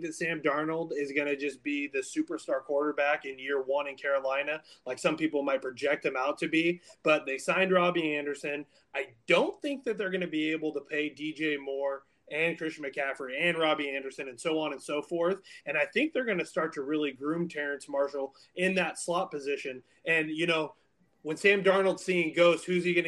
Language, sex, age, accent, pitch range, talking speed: English, male, 30-49, American, 140-165 Hz, 215 wpm